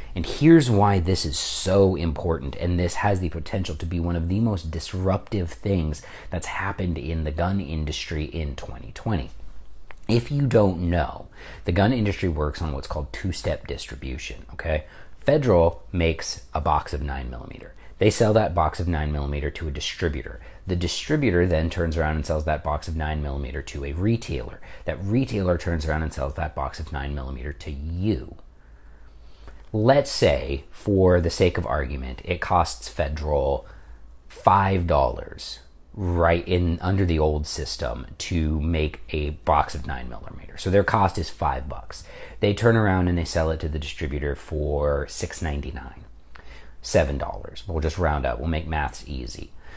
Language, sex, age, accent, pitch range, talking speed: English, male, 40-59, American, 75-95 Hz, 160 wpm